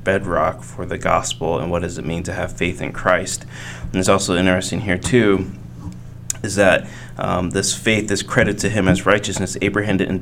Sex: male